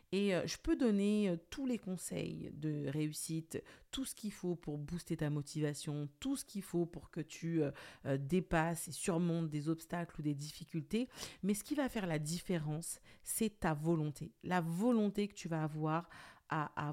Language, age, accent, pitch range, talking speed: French, 50-69, French, 160-210 Hz, 180 wpm